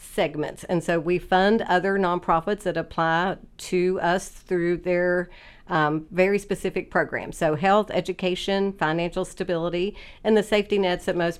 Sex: female